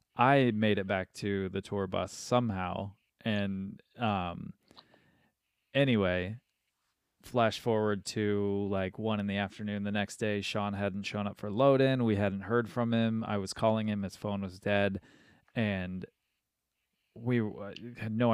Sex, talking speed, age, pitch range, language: male, 160 wpm, 20-39, 100-120 Hz, English